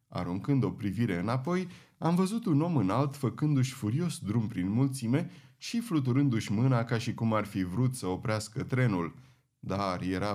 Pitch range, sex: 110-145 Hz, male